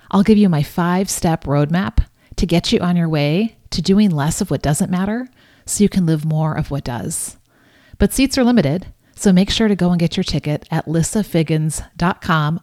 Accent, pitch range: American, 150-195 Hz